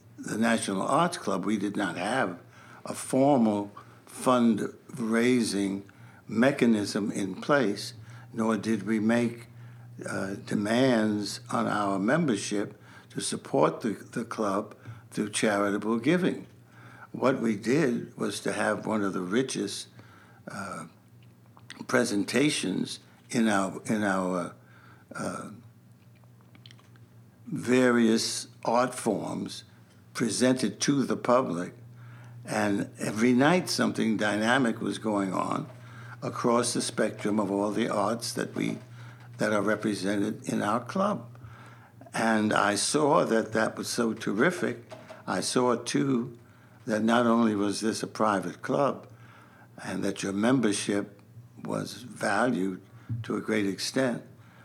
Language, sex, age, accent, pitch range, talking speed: English, male, 60-79, American, 100-120 Hz, 120 wpm